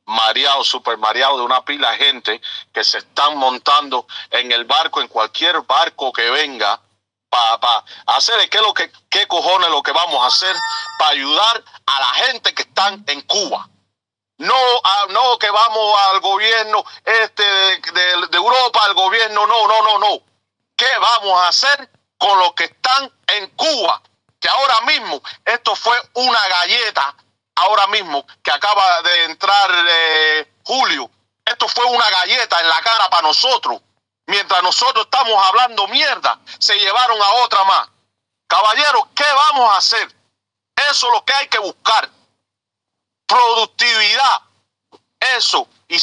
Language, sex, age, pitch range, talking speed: Spanish, male, 40-59, 175-240 Hz, 155 wpm